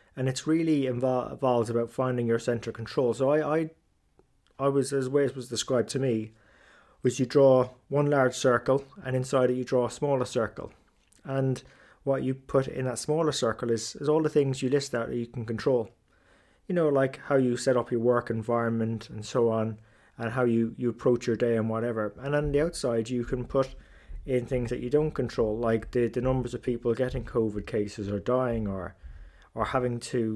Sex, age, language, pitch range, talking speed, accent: male, 20-39, English, 115-130 Hz, 205 wpm, British